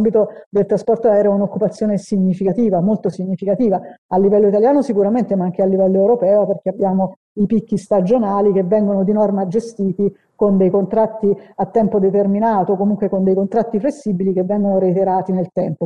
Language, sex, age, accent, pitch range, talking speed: Italian, female, 50-69, native, 190-215 Hz, 165 wpm